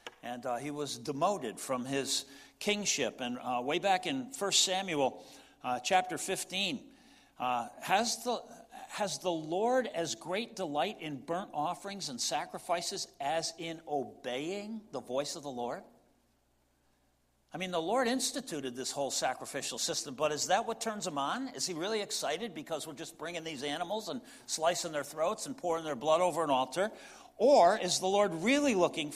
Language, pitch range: English, 150-220 Hz